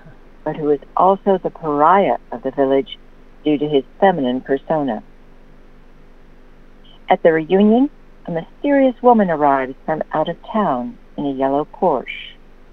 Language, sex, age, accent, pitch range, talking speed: English, female, 60-79, American, 150-205 Hz, 135 wpm